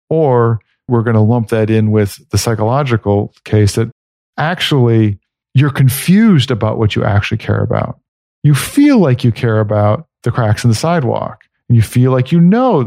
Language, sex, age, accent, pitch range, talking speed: English, male, 50-69, American, 110-135 Hz, 175 wpm